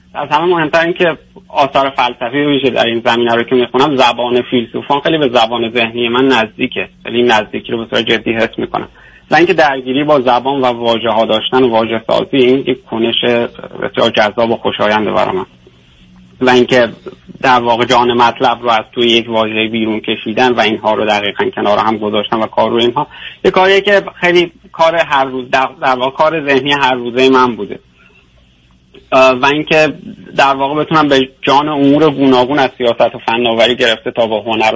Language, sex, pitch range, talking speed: Persian, male, 115-135 Hz, 175 wpm